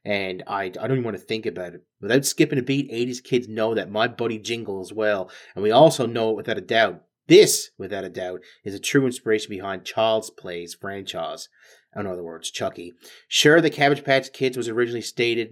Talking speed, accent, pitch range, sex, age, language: 215 wpm, American, 105-135 Hz, male, 30-49, English